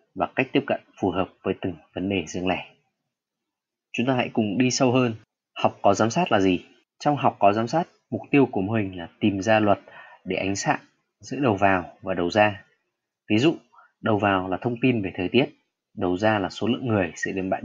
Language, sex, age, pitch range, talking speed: Vietnamese, male, 20-39, 95-130 Hz, 230 wpm